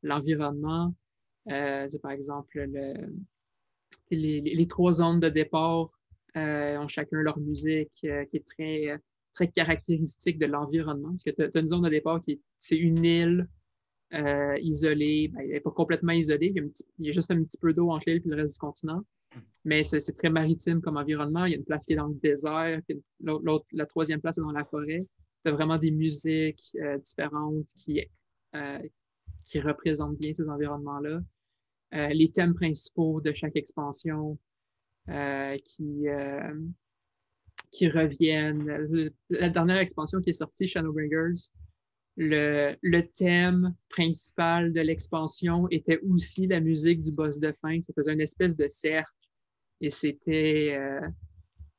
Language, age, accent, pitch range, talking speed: French, 20-39, Canadian, 145-165 Hz, 170 wpm